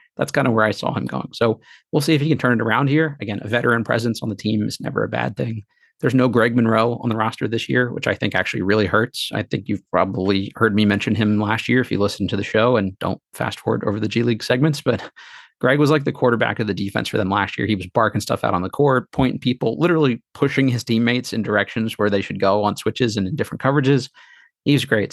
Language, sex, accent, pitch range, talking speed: English, male, American, 105-125 Hz, 265 wpm